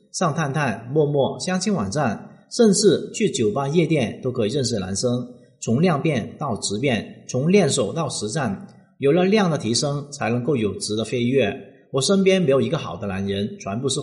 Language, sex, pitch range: Chinese, male, 110-175 Hz